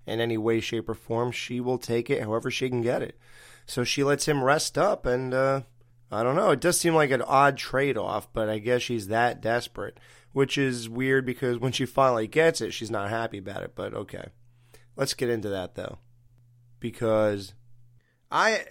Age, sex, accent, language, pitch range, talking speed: 30-49, male, American, English, 120-155 Hz, 200 wpm